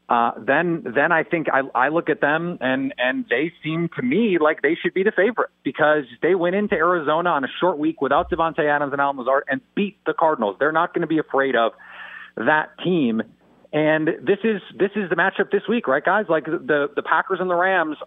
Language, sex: English, male